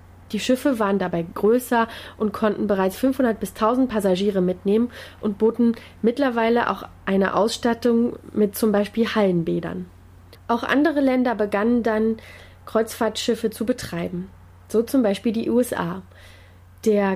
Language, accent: German, German